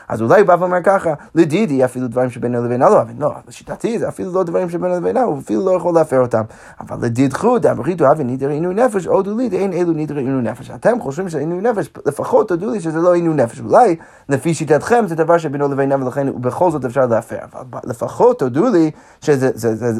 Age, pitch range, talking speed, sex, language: 30-49, 125-175 Hz, 195 wpm, male, Hebrew